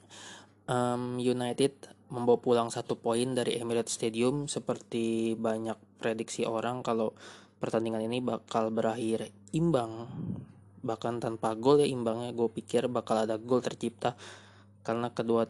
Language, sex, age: Indonesian, male, 20-39